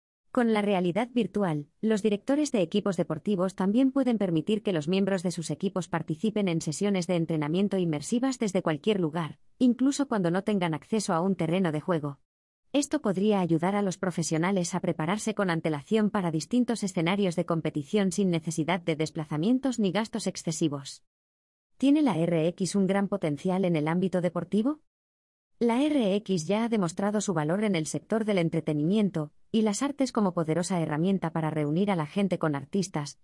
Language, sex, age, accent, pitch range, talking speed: Spanish, female, 20-39, Spanish, 160-210 Hz, 170 wpm